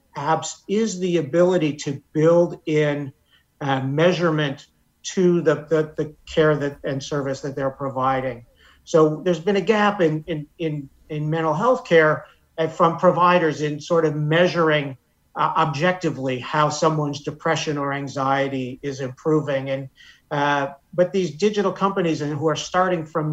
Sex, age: male, 50-69